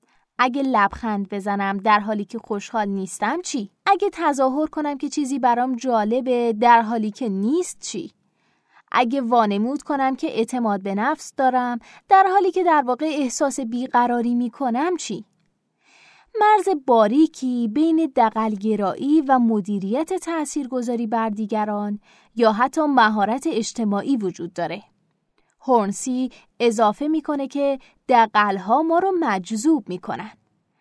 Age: 20-39